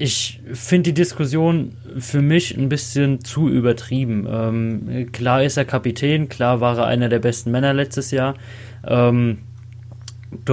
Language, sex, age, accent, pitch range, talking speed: German, male, 20-39, German, 115-130 Hz, 150 wpm